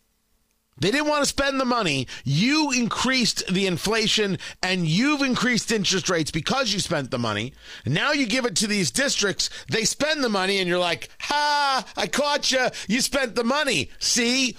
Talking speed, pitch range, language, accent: 180 wpm, 145-240 Hz, English, American